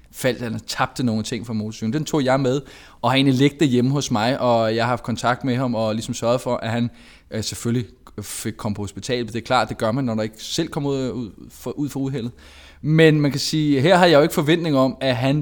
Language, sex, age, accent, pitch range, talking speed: Danish, male, 20-39, native, 110-140 Hz, 240 wpm